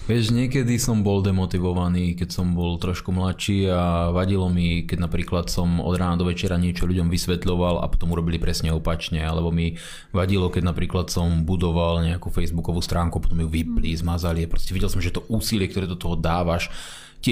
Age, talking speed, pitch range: 20-39, 185 wpm, 90-110 Hz